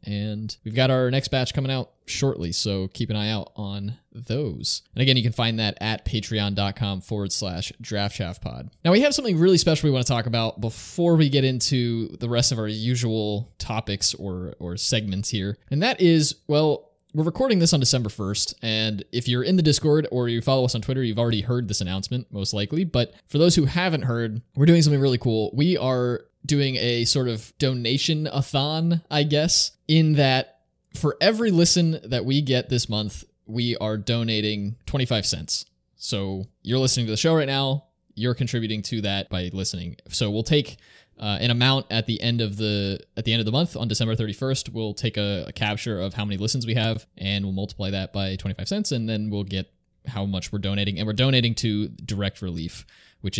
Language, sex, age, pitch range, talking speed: English, male, 20-39, 105-135 Hz, 205 wpm